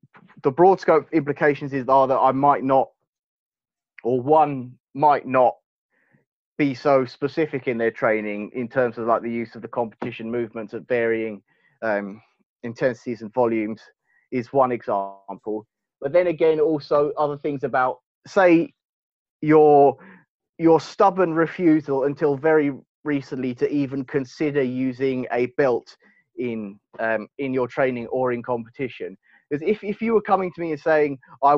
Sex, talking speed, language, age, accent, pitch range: male, 150 wpm, English, 30-49, British, 120-150 Hz